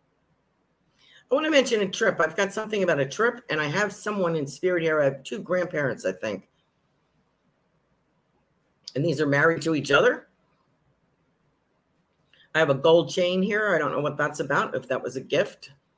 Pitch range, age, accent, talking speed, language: 130-180 Hz, 50-69, American, 185 wpm, English